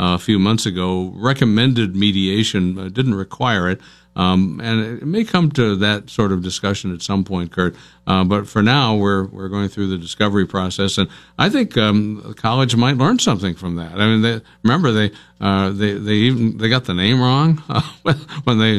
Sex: male